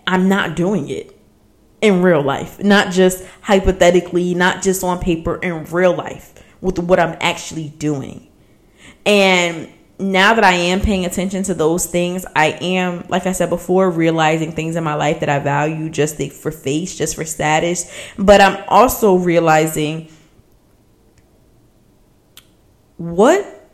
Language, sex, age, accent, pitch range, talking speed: English, female, 20-39, American, 160-205 Hz, 145 wpm